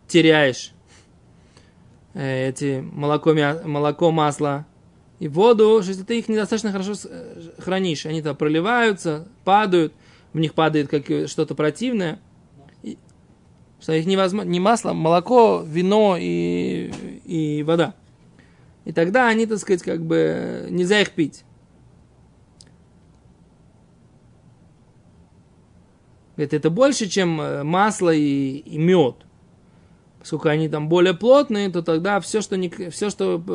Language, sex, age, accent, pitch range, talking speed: Russian, male, 20-39, native, 155-205 Hz, 110 wpm